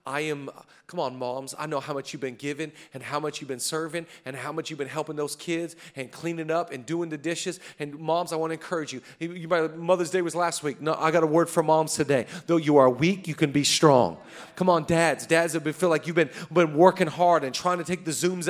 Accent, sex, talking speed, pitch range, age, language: American, male, 270 wpm, 165-215 Hz, 40-59, English